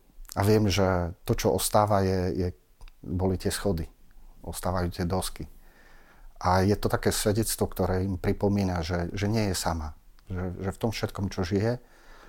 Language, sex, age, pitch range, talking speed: Slovak, male, 40-59, 85-100 Hz, 155 wpm